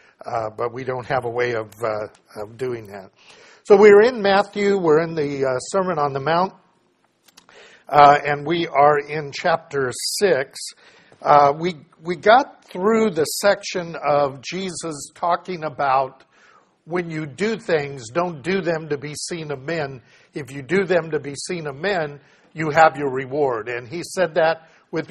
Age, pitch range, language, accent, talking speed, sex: 50-69, 140-175 Hz, English, American, 170 wpm, male